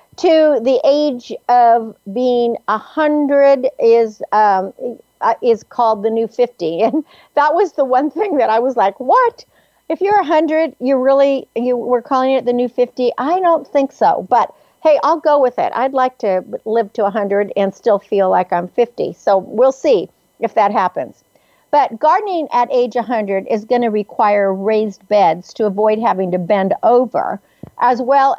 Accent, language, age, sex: American, English, 50-69, female